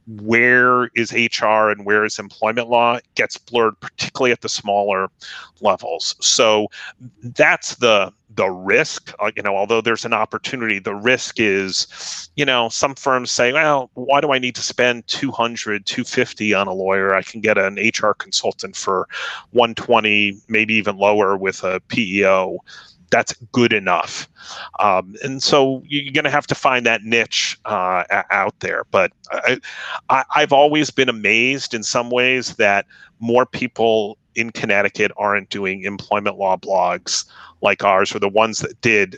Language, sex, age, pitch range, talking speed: English, male, 30-49, 100-125 Hz, 160 wpm